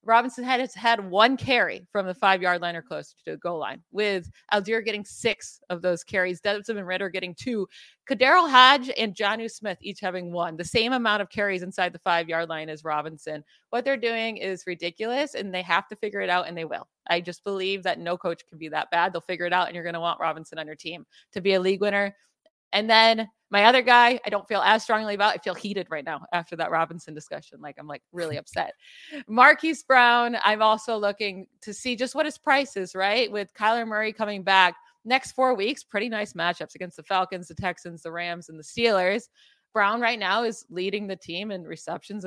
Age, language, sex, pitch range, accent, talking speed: 30-49, English, female, 180-225 Hz, American, 225 wpm